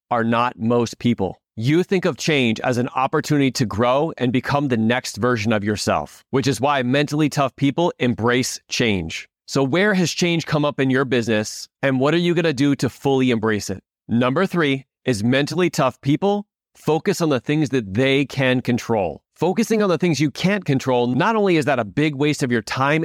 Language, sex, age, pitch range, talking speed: English, male, 30-49, 120-160 Hz, 205 wpm